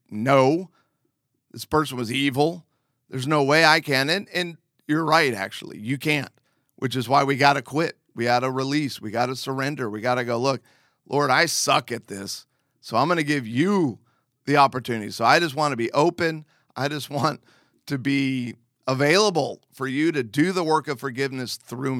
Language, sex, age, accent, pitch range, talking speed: English, male, 40-59, American, 125-150 Hz, 195 wpm